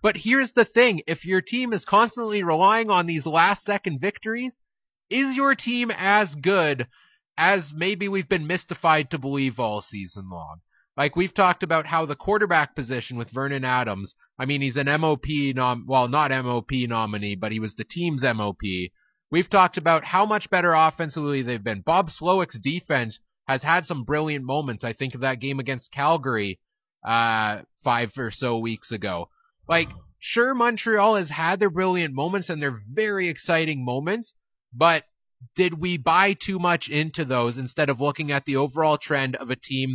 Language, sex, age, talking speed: English, male, 30-49, 175 wpm